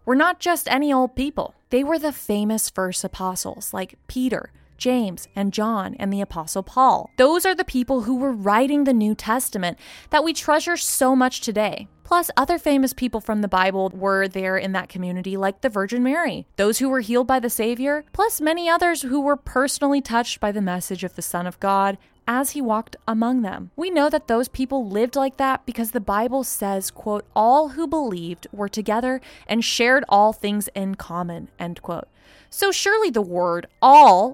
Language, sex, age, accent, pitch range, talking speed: English, female, 20-39, American, 195-275 Hz, 195 wpm